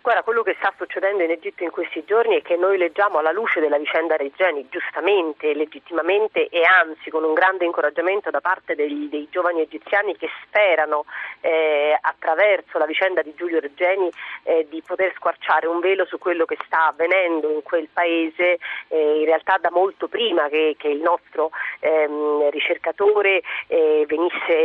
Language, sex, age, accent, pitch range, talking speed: Italian, female, 40-59, native, 160-205 Hz, 165 wpm